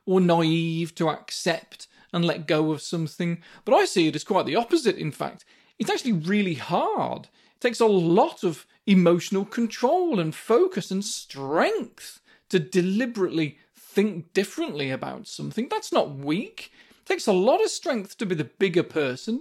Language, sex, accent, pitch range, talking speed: English, male, British, 165-240 Hz, 165 wpm